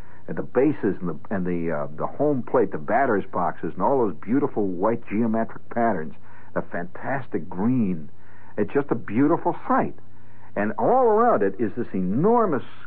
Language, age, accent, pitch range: English, 60-79, American, 105-135 Hz